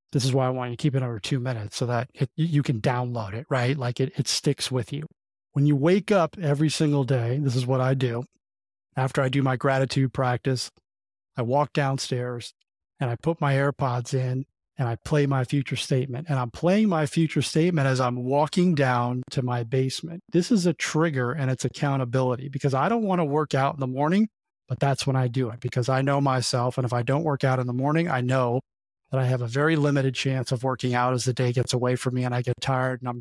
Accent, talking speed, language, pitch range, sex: American, 240 wpm, English, 125-145 Hz, male